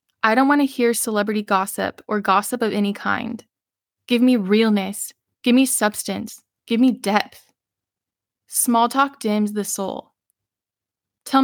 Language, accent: English, American